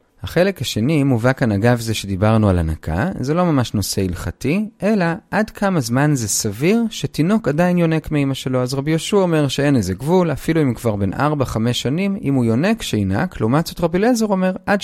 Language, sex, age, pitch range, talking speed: Hebrew, male, 30-49, 110-170 Hz, 200 wpm